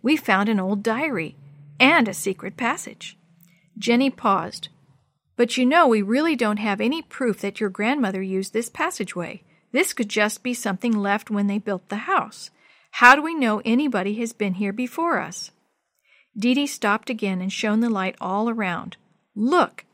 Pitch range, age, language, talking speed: 200-260 Hz, 50-69, English, 175 wpm